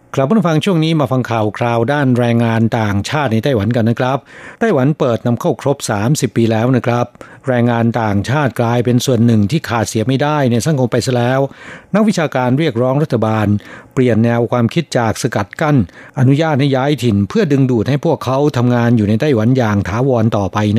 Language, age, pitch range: Thai, 60-79, 115-140 Hz